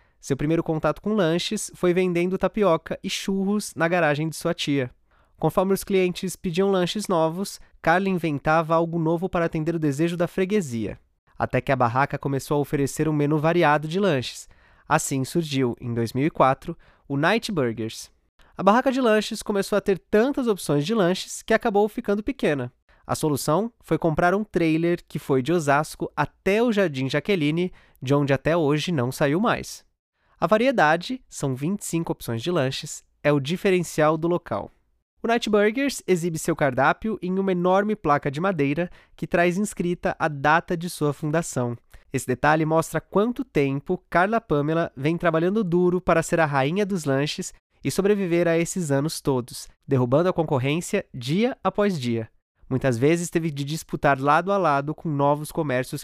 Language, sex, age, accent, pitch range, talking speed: Portuguese, male, 20-39, Brazilian, 145-190 Hz, 170 wpm